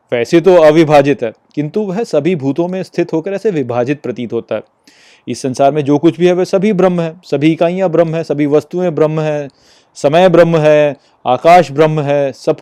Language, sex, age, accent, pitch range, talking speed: Hindi, male, 30-49, native, 135-175 Hz, 200 wpm